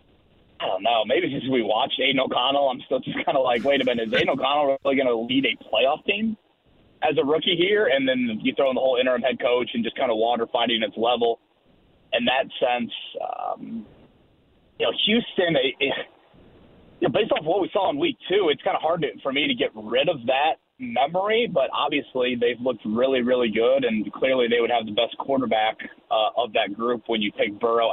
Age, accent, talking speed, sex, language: 30-49, American, 225 wpm, male, English